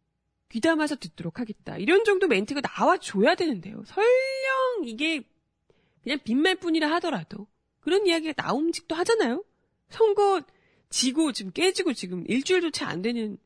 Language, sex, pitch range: Korean, female, 200-325 Hz